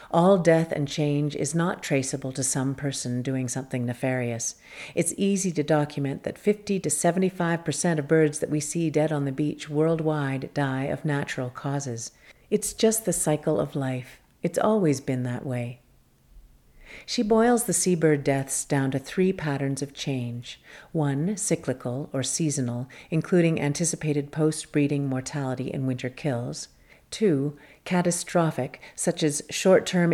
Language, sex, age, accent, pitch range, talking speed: English, female, 50-69, American, 135-170 Hz, 145 wpm